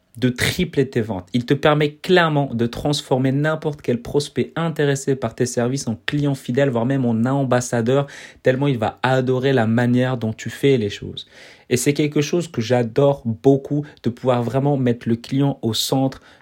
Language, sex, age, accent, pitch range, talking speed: French, male, 30-49, French, 120-140 Hz, 185 wpm